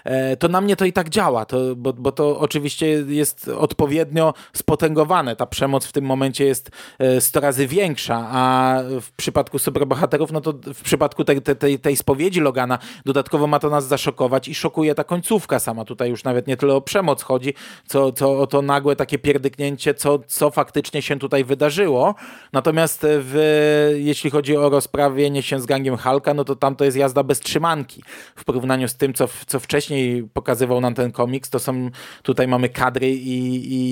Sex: male